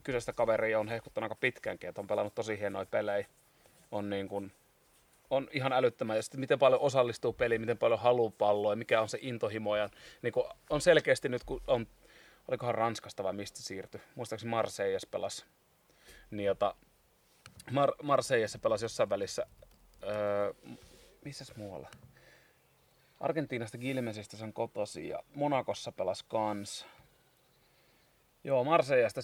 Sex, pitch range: male, 105-130 Hz